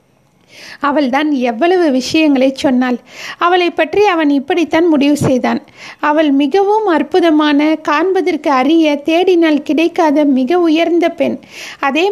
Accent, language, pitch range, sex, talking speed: native, Tamil, 285-350 Hz, female, 110 wpm